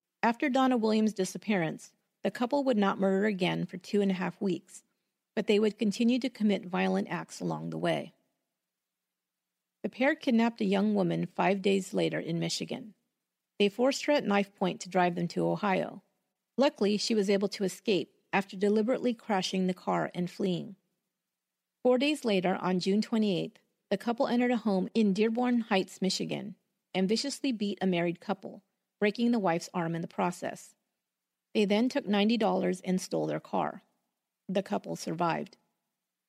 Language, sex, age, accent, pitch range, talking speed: English, female, 40-59, American, 185-225 Hz, 165 wpm